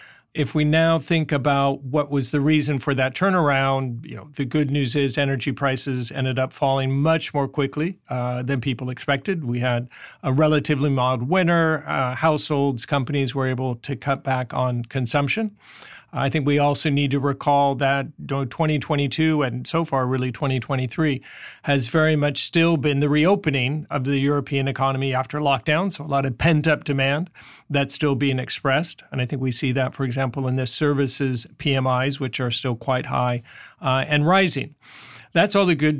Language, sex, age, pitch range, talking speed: English, male, 40-59, 130-150 Hz, 180 wpm